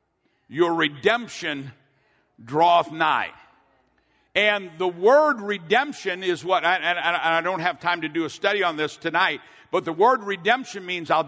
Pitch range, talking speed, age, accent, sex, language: 180-255 Hz, 160 wpm, 60-79, American, male, English